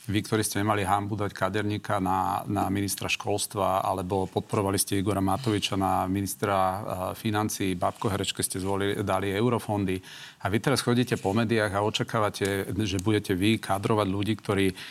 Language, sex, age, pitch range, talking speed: Slovak, male, 40-59, 95-110 Hz, 155 wpm